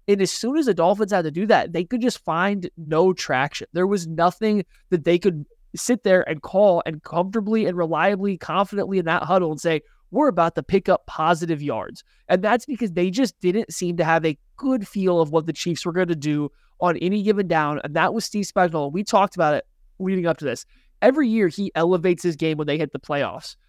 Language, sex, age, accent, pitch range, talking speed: English, male, 20-39, American, 170-230 Hz, 230 wpm